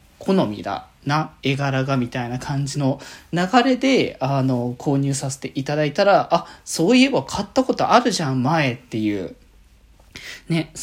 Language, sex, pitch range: Japanese, male, 135-190 Hz